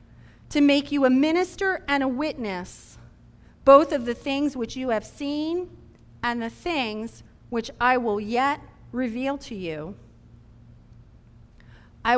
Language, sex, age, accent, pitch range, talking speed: English, female, 40-59, American, 215-290 Hz, 135 wpm